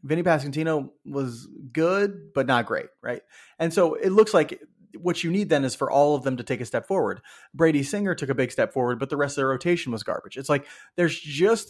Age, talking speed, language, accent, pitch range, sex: 30-49, 235 wpm, English, American, 125-155 Hz, male